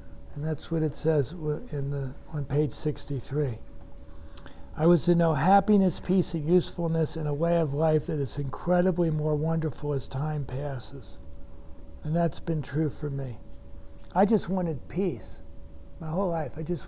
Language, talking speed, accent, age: English, 165 wpm, American, 60-79